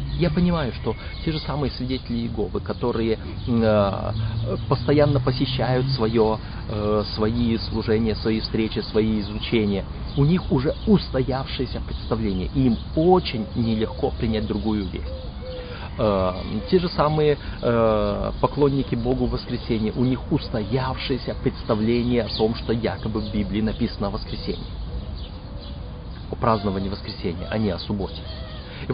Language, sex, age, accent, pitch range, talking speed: Russian, male, 30-49, native, 105-140 Hz, 125 wpm